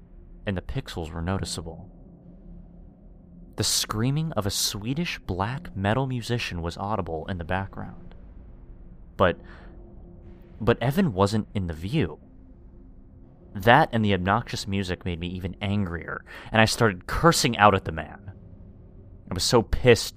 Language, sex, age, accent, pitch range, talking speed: English, male, 30-49, American, 75-105 Hz, 135 wpm